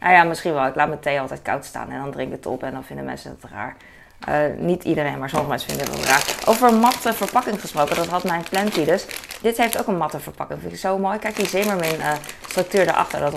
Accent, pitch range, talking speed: Dutch, 170-225 Hz, 270 wpm